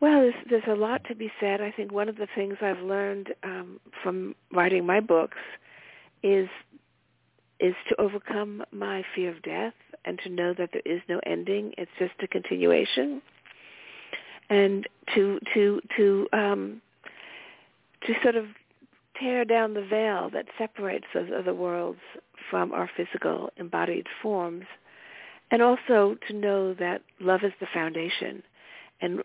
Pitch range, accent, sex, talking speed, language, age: 180-210 Hz, American, female, 150 wpm, English, 50-69